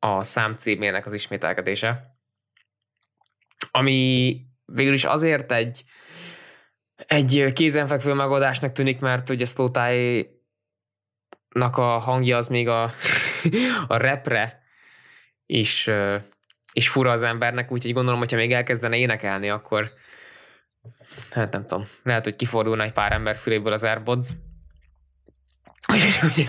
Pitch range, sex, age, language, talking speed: 110-130 Hz, male, 20-39, Hungarian, 110 wpm